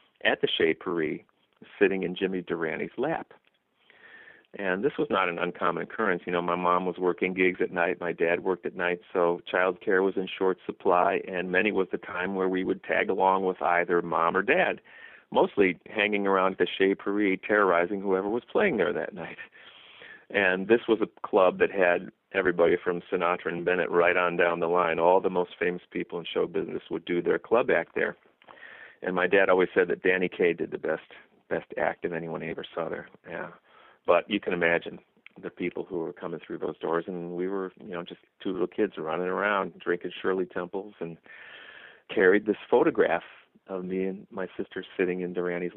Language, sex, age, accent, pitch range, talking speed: English, male, 40-59, American, 90-100 Hz, 200 wpm